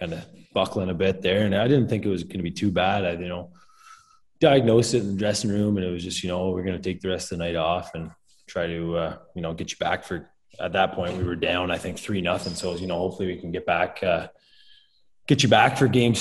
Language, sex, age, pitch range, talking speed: English, male, 20-39, 90-105 Hz, 280 wpm